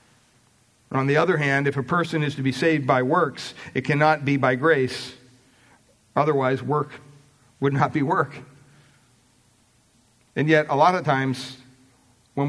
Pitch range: 120-135 Hz